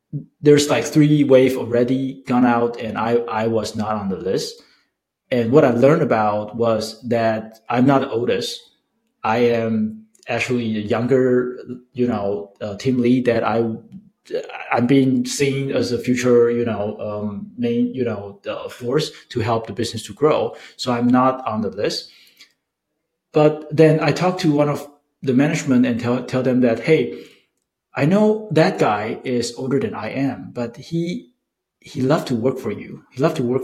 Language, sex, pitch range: English, male, 115-145 Hz